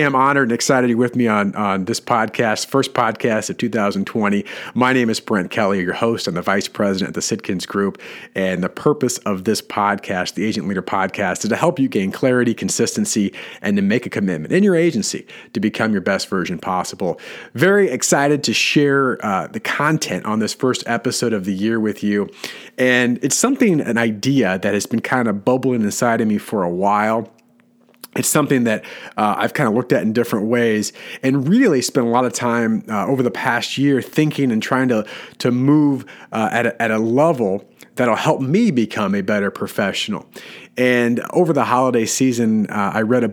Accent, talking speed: American, 205 wpm